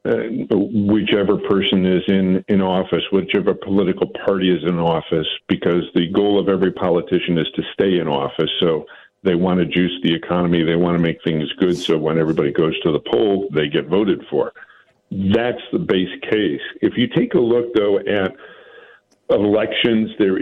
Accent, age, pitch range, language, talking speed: American, 50-69, 85-100 Hz, English, 180 wpm